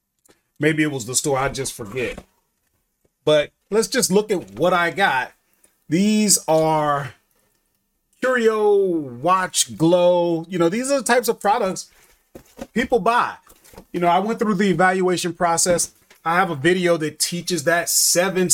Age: 30-49